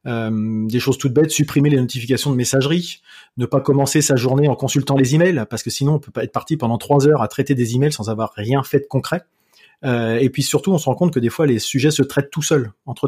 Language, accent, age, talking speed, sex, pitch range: French, French, 30-49, 265 wpm, male, 130-165 Hz